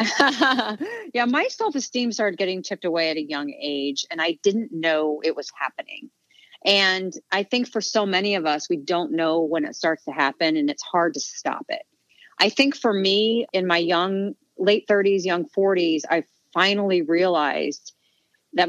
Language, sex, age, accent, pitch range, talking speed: English, female, 40-59, American, 160-195 Hz, 175 wpm